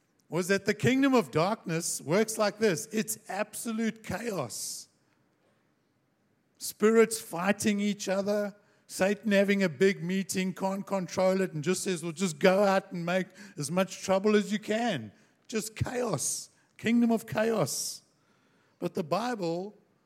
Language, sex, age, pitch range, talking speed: English, male, 60-79, 130-195 Hz, 140 wpm